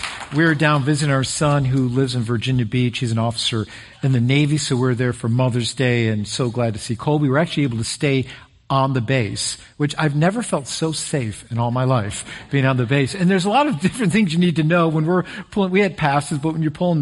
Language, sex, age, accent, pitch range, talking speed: English, male, 50-69, American, 120-155 Hz, 250 wpm